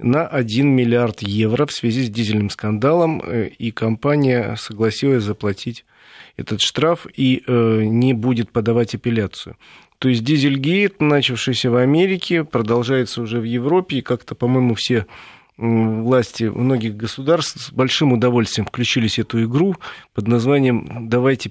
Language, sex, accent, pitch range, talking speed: Russian, male, native, 115-140 Hz, 130 wpm